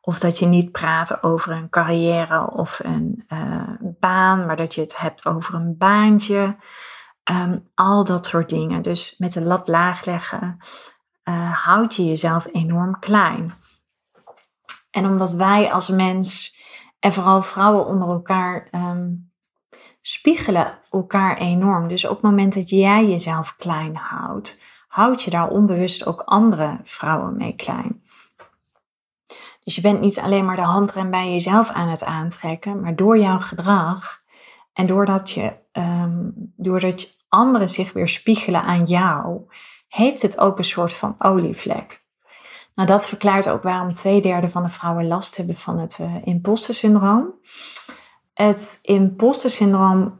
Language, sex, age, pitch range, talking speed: Dutch, female, 30-49, 175-205 Hz, 145 wpm